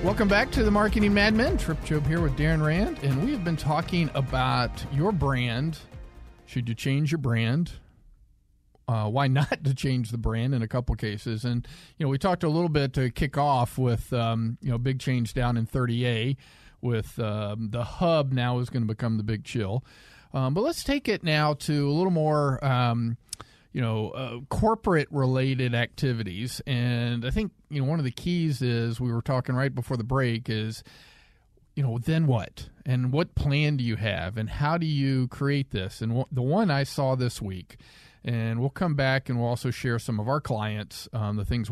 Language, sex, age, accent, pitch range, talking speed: English, male, 40-59, American, 115-145 Hz, 200 wpm